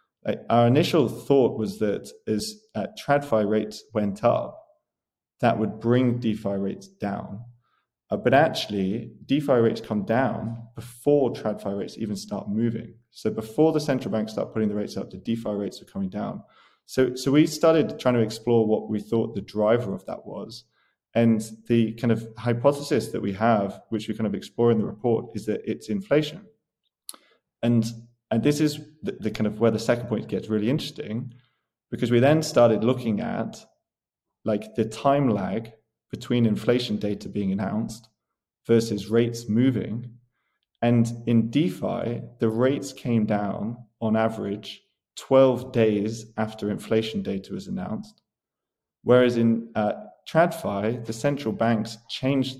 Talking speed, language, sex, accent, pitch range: 160 wpm, English, male, British, 110-125 Hz